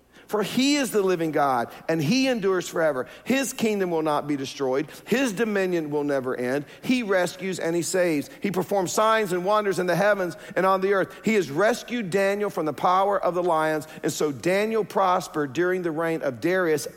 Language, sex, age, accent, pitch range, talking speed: English, male, 50-69, American, 145-195 Hz, 200 wpm